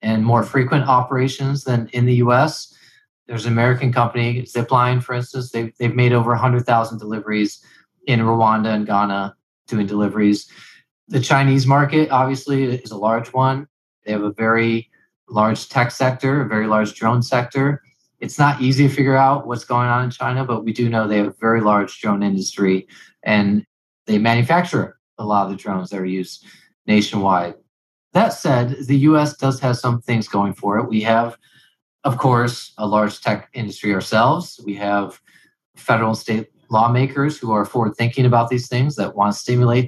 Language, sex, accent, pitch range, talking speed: English, male, American, 110-130 Hz, 180 wpm